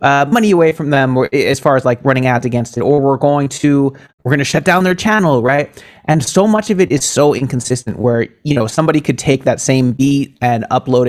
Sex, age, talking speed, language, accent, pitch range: male, 20-39, 245 wpm, English, American, 125-165 Hz